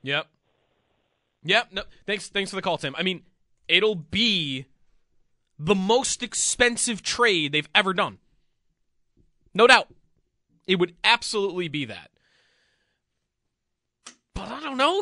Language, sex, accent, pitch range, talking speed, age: English, male, American, 150-220 Hz, 125 wpm, 20-39